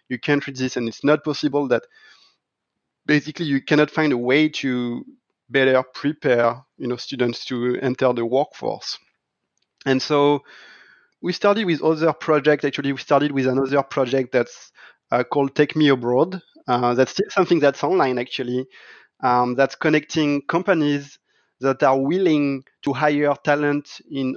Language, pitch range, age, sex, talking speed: English, 130-155 Hz, 30-49, male, 145 wpm